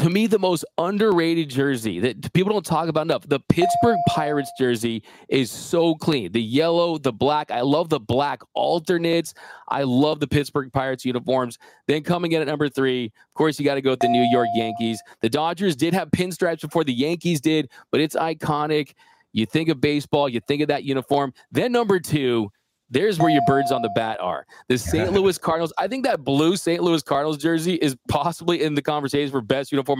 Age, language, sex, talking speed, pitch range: 20-39, English, male, 205 wpm, 135-170 Hz